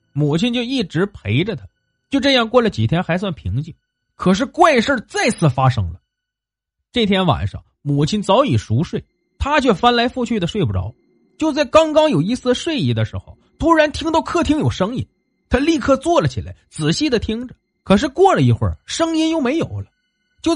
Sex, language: male, Chinese